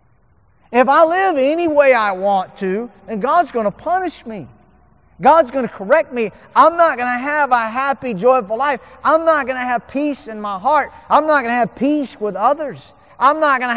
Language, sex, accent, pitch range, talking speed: English, male, American, 165-255 Hz, 215 wpm